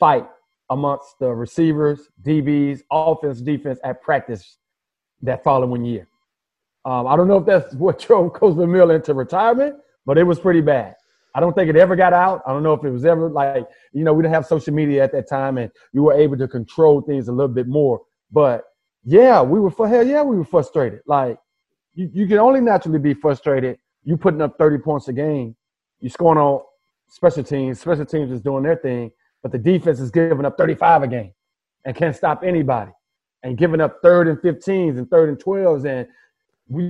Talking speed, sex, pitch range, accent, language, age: 205 wpm, male, 135-185 Hz, American, English, 30-49